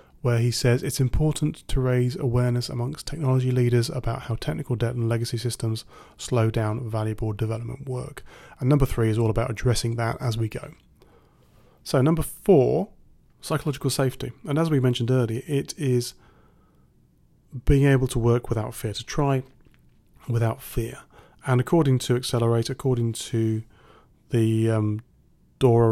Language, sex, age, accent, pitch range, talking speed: English, male, 30-49, British, 110-130 Hz, 150 wpm